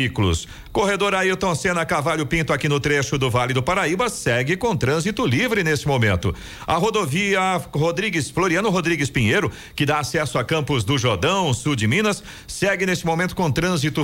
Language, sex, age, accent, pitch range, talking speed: Portuguese, male, 50-69, Brazilian, 130-185 Hz, 165 wpm